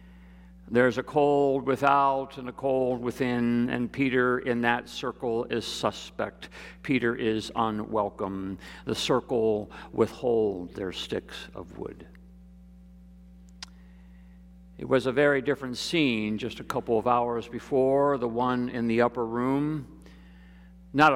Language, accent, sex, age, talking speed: English, American, male, 50-69, 125 wpm